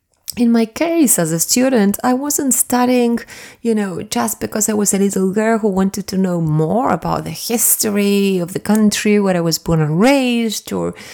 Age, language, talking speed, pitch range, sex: 30-49, English, 195 wpm, 165-225 Hz, female